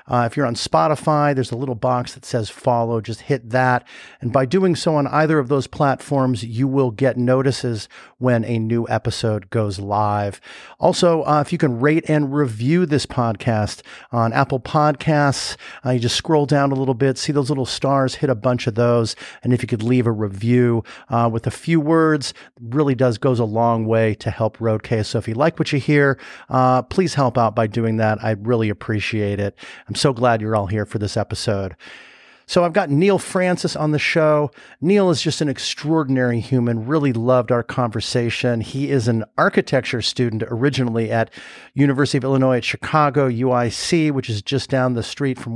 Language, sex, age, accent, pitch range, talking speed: English, male, 40-59, American, 115-145 Hz, 200 wpm